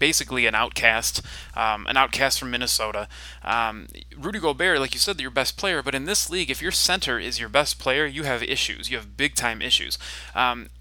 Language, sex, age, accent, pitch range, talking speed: English, male, 20-39, American, 115-135 Hz, 205 wpm